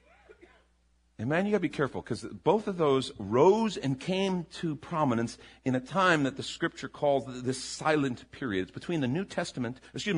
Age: 40-59